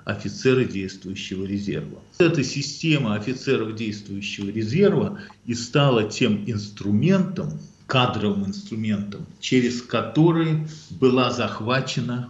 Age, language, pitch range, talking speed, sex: 50-69, Russian, 105-150 Hz, 90 wpm, male